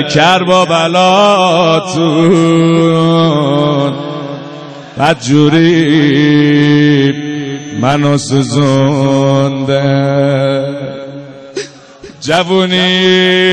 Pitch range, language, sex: 145-185 Hz, Persian, male